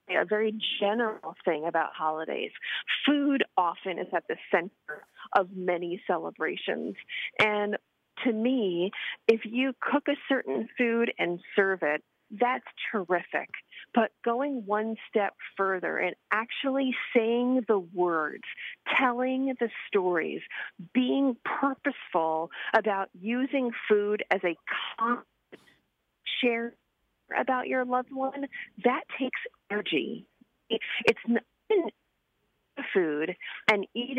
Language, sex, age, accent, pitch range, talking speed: English, female, 40-59, American, 190-250 Hz, 110 wpm